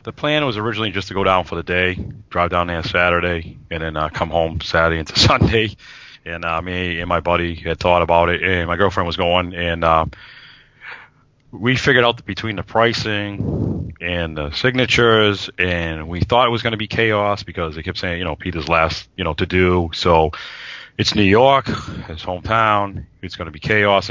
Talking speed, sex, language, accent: 200 wpm, male, English, American